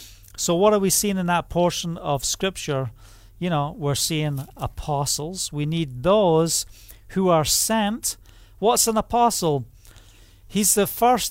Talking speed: 145 wpm